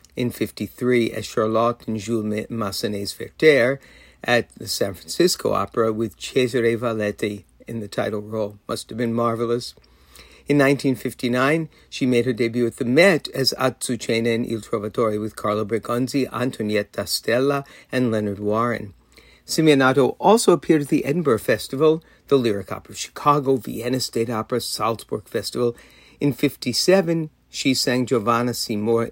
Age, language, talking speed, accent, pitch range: 60-79, English, 145 wpm, American, 105-125 Hz